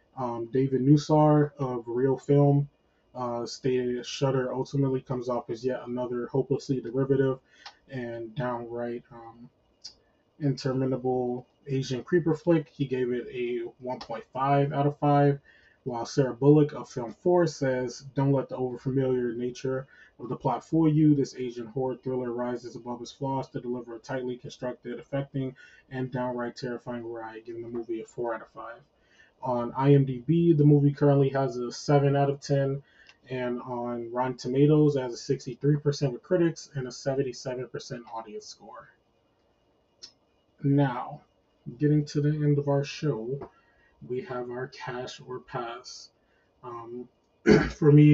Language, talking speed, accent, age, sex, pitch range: English, 150 wpm, American, 20-39, male, 120-140 Hz